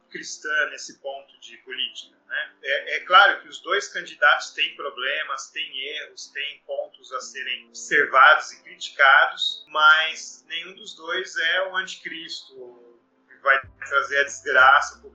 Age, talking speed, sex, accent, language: 30-49, 150 wpm, male, Brazilian, Portuguese